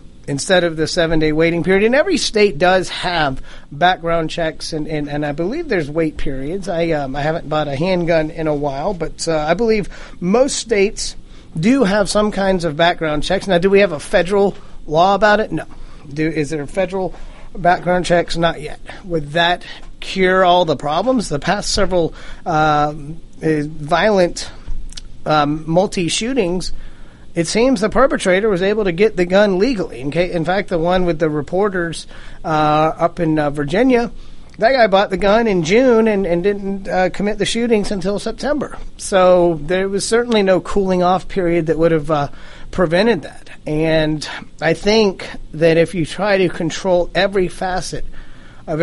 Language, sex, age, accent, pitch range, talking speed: English, male, 30-49, American, 155-195 Hz, 175 wpm